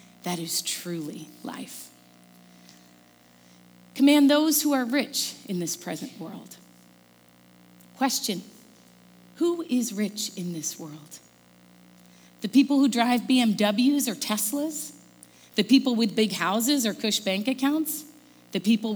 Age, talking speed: 30-49, 120 wpm